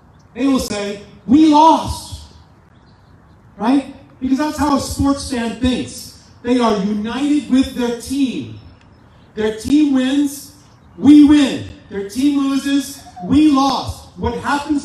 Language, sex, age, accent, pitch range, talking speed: English, male, 40-59, American, 195-270 Hz, 125 wpm